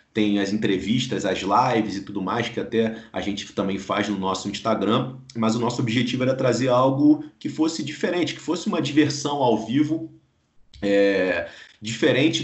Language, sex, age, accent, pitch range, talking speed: Portuguese, male, 40-59, Brazilian, 100-120 Hz, 165 wpm